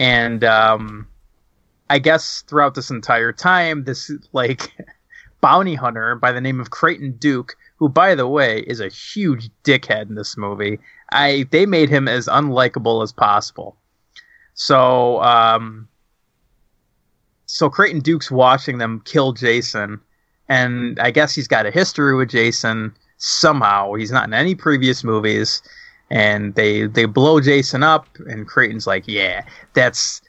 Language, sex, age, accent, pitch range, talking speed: English, male, 20-39, American, 110-145 Hz, 145 wpm